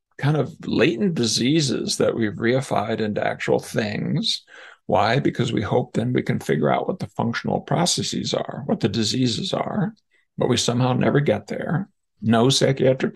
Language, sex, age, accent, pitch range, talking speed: English, male, 50-69, American, 110-160 Hz, 165 wpm